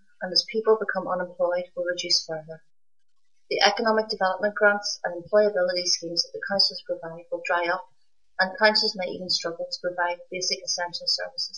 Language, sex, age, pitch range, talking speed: English, female, 30-49, 175-205 Hz, 165 wpm